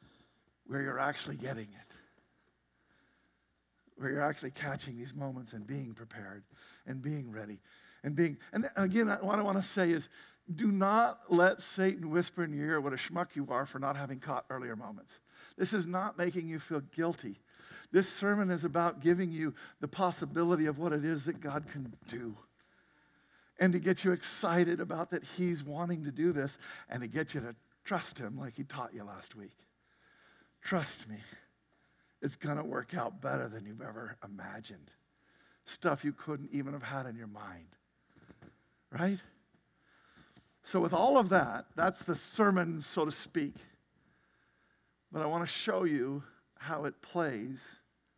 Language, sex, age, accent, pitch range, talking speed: English, male, 60-79, American, 130-175 Hz, 170 wpm